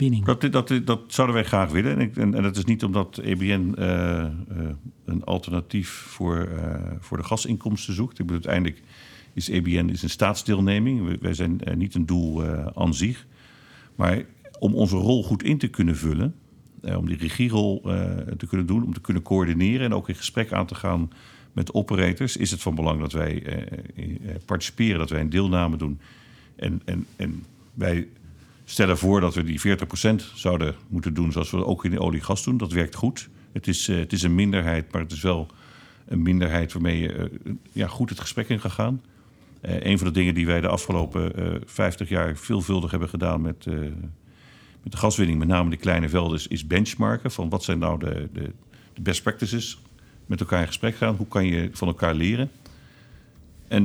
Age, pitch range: 50-69, 85-110 Hz